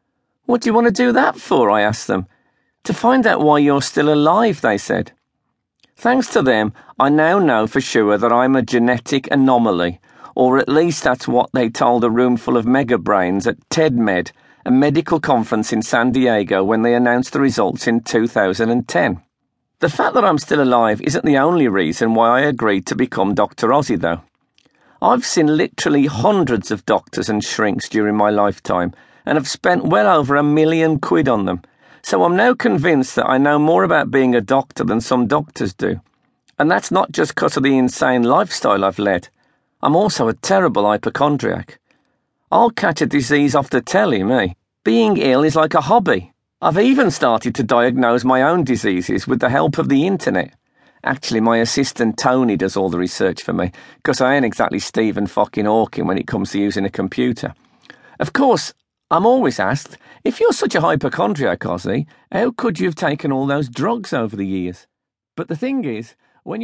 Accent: British